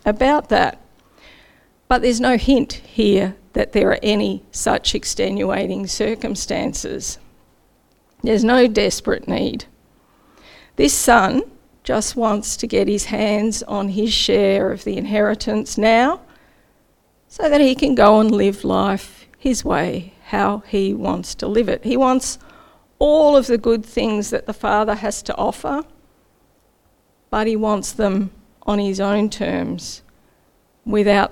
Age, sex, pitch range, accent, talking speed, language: 50-69, female, 200-245 Hz, Australian, 135 wpm, English